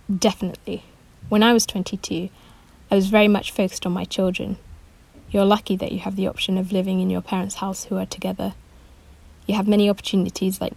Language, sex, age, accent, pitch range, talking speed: English, female, 20-39, British, 175-200 Hz, 190 wpm